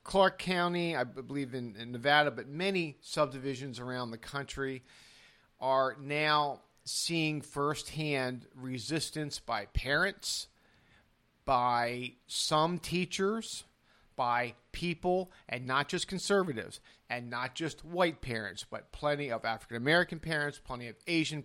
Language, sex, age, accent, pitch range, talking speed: English, male, 50-69, American, 125-155 Hz, 120 wpm